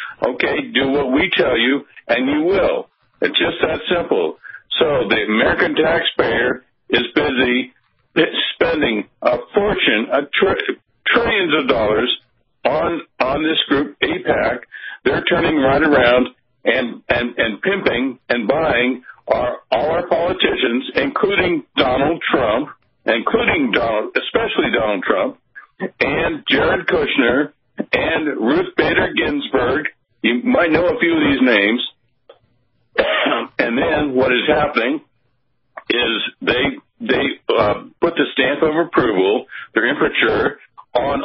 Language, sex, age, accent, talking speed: English, male, 60-79, American, 125 wpm